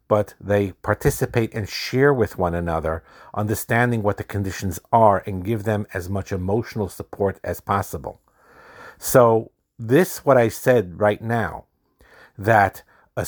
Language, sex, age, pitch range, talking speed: English, male, 50-69, 100-120 Hz, 140 wpm